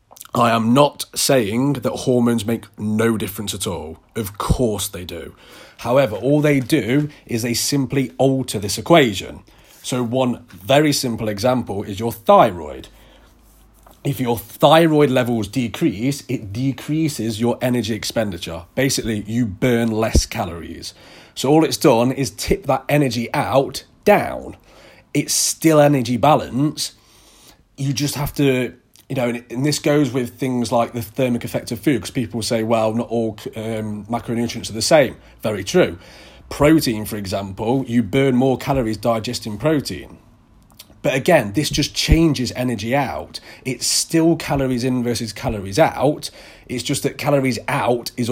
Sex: male